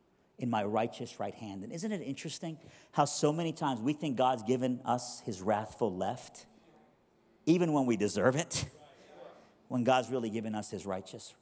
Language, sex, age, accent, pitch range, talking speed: English, male, 50-69, American, 110-135 Hz, 175 wpm